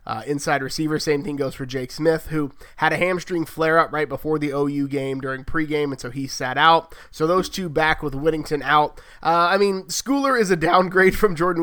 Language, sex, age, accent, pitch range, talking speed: English, male, 30-49, American, 145-175 Hz, 215 wpm